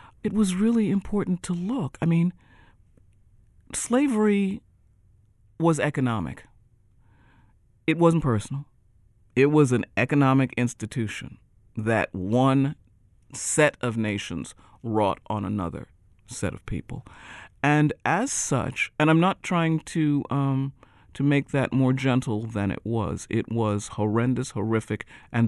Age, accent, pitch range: 50-69, American, 105-140 Hz